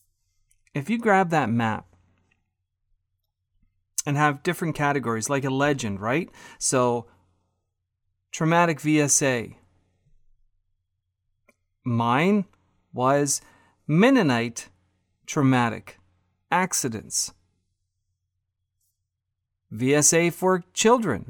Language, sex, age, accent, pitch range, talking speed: English, male, 40-59, American, 95-160 Hz, 70 wpm